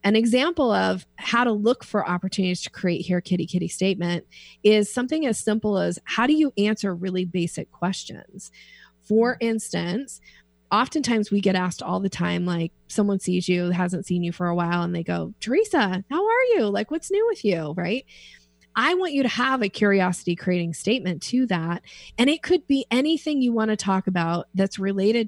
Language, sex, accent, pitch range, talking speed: English, female, American, 180-245 Hz, 190 wpm